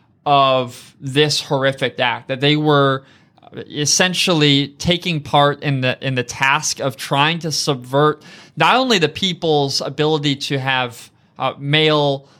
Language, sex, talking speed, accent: English, male, 135 wpm, American